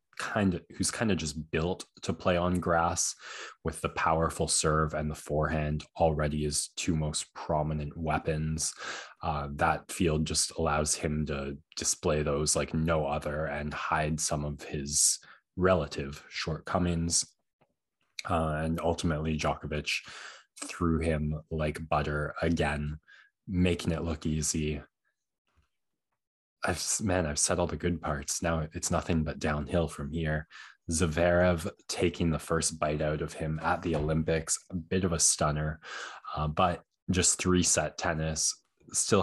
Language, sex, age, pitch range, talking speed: English, male, 20-39, 75-85 Hz, 145 wpm